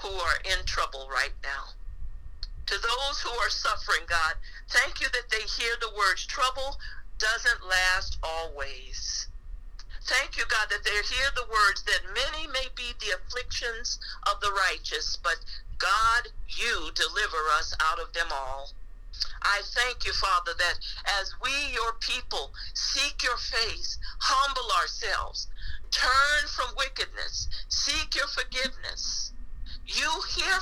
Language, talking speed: English, 140 wpm